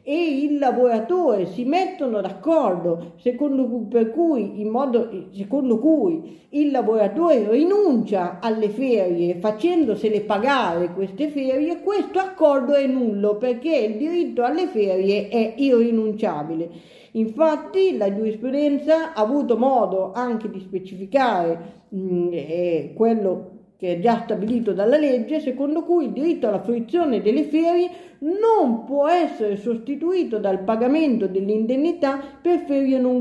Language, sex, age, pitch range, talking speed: Italian, female, 50-69, 210-295 Hz, 125 wpm